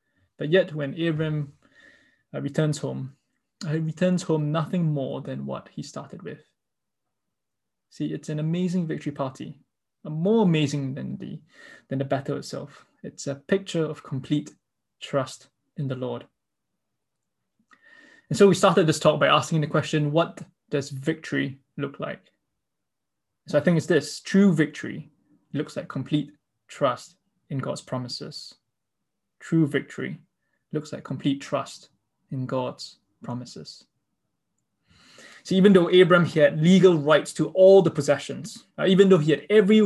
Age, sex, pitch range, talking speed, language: 20-39, male, 140-180 Hz, 140 wpm, English